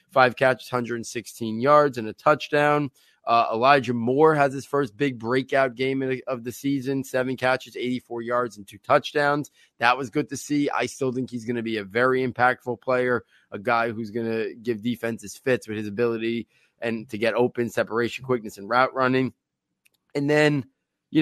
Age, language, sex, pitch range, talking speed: 30-49, English, male, 125-145 Hz, 185 wpm